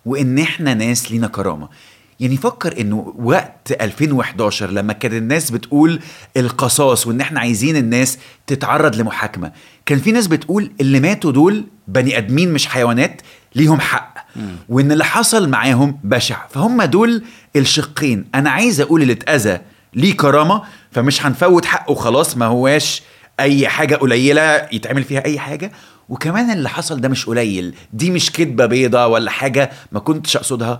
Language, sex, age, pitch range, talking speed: Arabic, male, 30-49, 115-150 Hz, 150 wpm